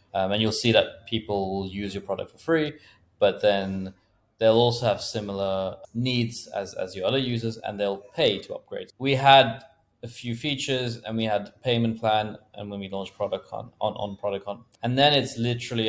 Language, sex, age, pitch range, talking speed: English, male, 20-39, 95-115 Hz, 200 wpm